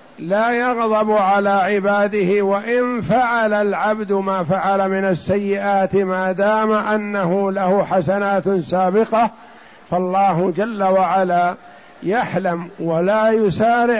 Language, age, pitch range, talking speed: Arabic, 50-69, 180-215 Hz, 100 wpm